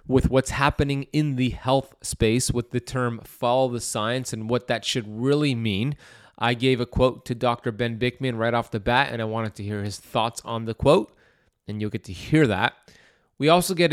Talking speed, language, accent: 215 wpm, English, American